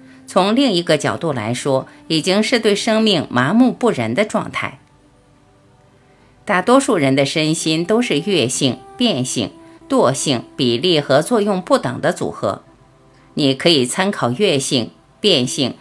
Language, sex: Chinese, female